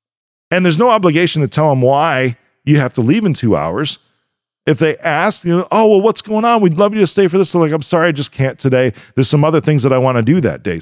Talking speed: 285 wpm